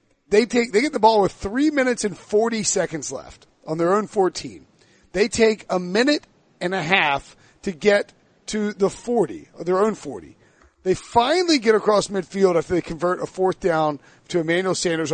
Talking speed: 185 wpm